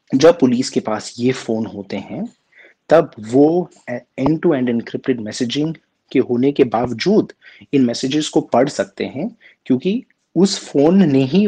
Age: 30-49